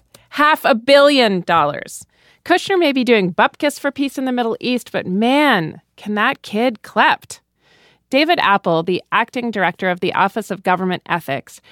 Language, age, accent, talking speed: English, 40-59, American, 165 wpm